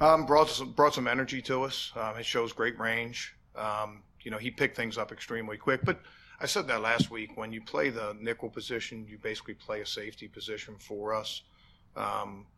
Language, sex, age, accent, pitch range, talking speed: English, male, 40-59, American, 105-115 Hz, 205 wpm